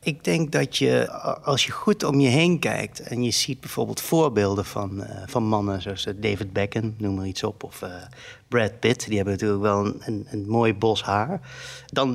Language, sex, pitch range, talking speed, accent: Dutch, male, 110-145 Hz, 200 wpm, Dutch